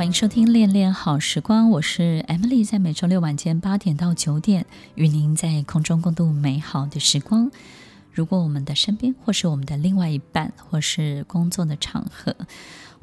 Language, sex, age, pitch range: Chinese, female, 20-39, 150-180 Hz